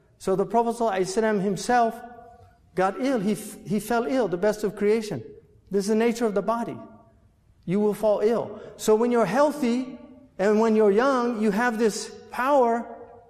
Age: 50-69